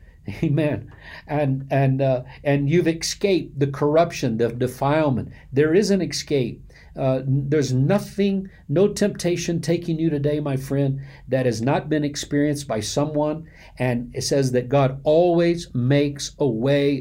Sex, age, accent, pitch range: male, 50-69, American, 125-160 Hz